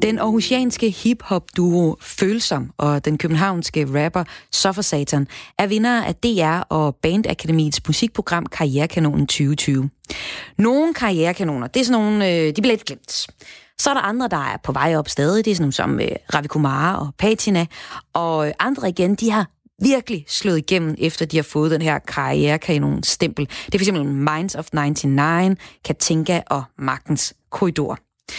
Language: Danish